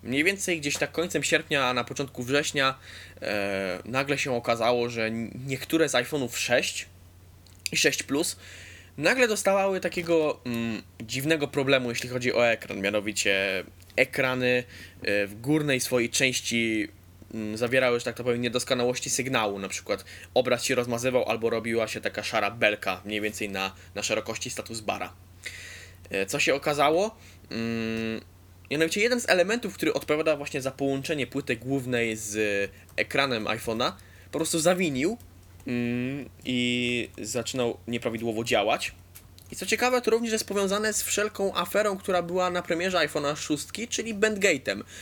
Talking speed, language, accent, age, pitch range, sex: 145 wpm, Polish, native, 20-39, 100-145 Hz, male